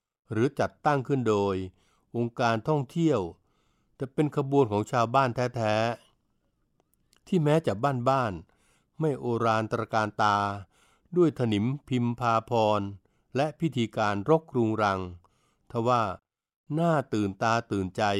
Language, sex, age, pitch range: Thai, male, 60-79, 105-140 Hz